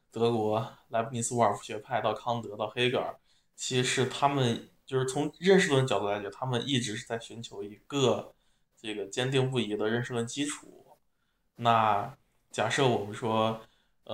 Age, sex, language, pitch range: 20-39, male, Chinese, 110-130 Hz